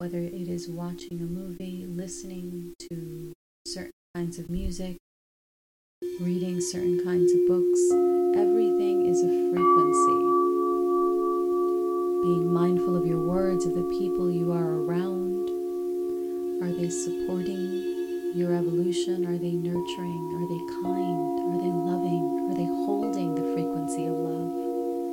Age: 30-49